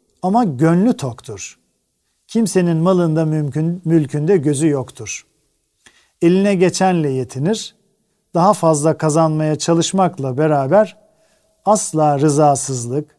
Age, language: 50-69, Turkish